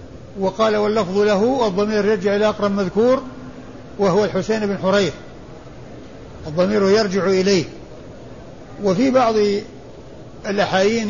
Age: 60-79